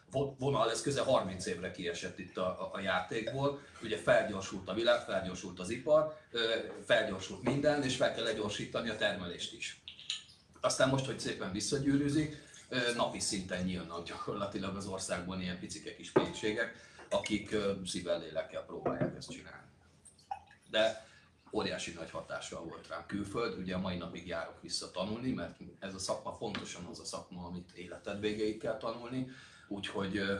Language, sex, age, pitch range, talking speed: Hungarian, male, 40-59, 90-110 Hz, 145 wpm